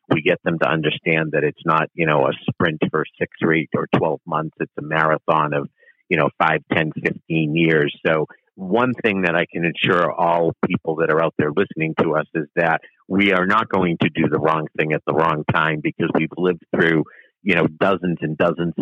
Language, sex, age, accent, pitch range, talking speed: English, male, 50-69, American, 80-95 Hz, 220 wpm